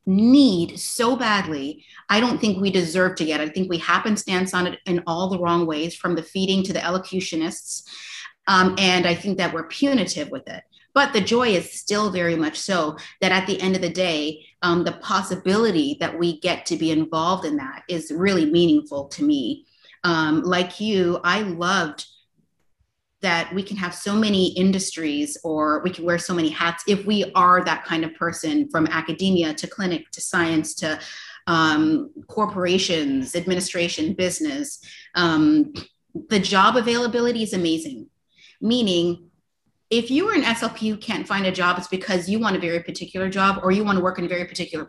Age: 30-49